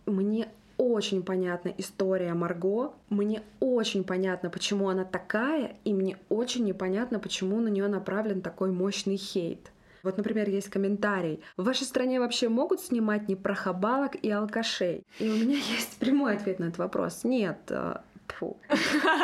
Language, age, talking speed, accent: Russian, 20-39, 145 wpm, native